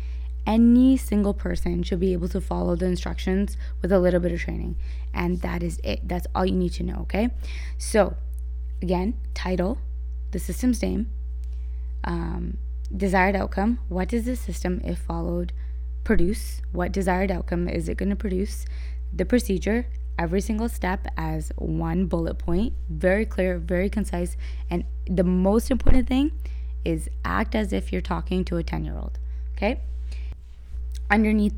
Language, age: English, 20-39